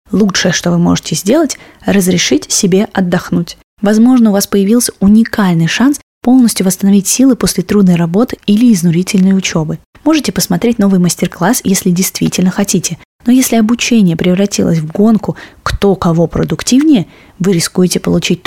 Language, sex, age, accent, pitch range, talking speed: Russian, female, 20-39, native, 175-225 Hz, 140 wpm